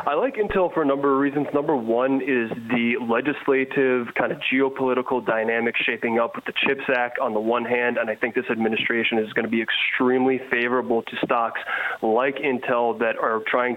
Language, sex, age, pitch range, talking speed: English, male, 20-39, 115-130 Hz, 195 wpm